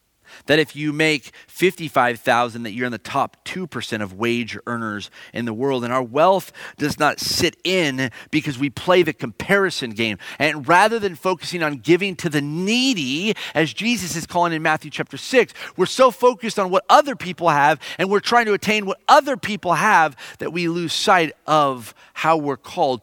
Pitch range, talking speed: 145-205 Hz, 190 wpm